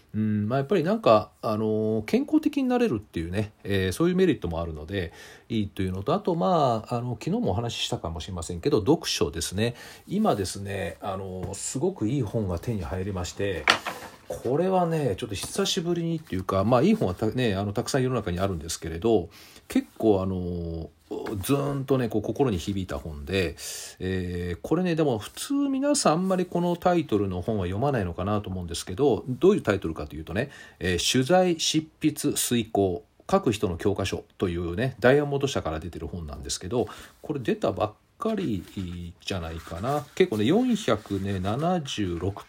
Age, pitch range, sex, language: 40-59, 95-150 Hz, male, Japanese